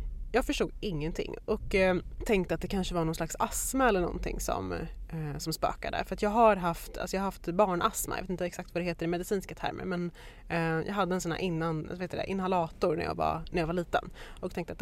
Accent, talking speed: native, 245 wpm